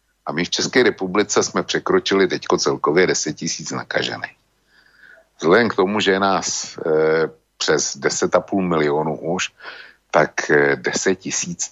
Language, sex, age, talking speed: Slovak, male, 60-79, 135 wpm